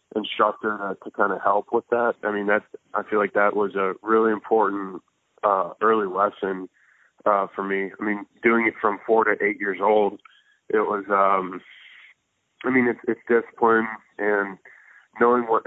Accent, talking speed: American, 175 wpm